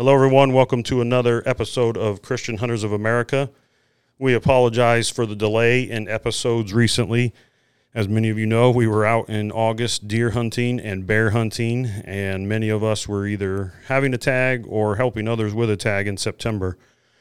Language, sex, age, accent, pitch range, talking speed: English, male, 40-59, American, 100-115 Hz, 180 wpm